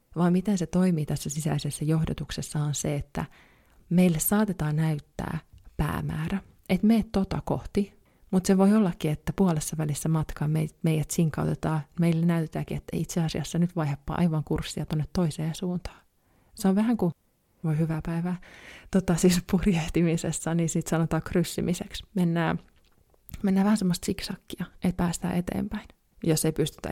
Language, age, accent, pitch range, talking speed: Finnish, 20-39, native, 155-190 Hz, 145 wpm